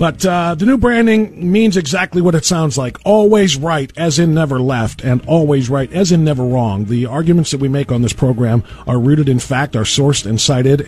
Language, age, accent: English, 50-69, American